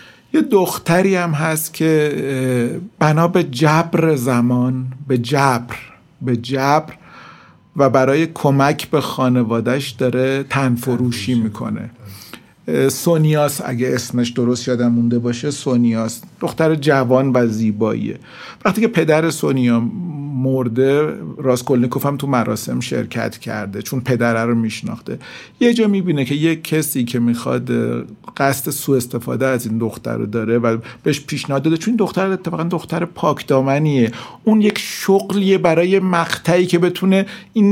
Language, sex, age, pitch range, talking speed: Persian, male, 50-69, 125-170 Hz, 125 wpm